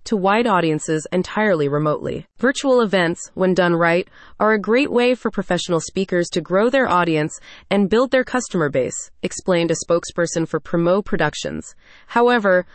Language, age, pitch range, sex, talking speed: English, 30-49, 170-235 Hz, female, 155 wpm